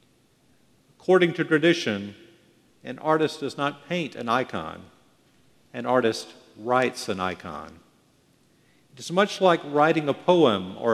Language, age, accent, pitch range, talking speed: English, 50-69, American, 120-170 Hz, 125 wpm